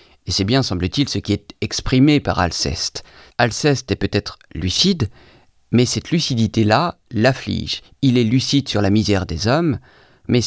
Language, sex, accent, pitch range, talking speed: French, male, French, 100-140 Hz, 155 wpm